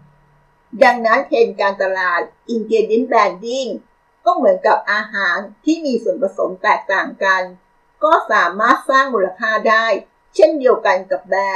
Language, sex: Thai, female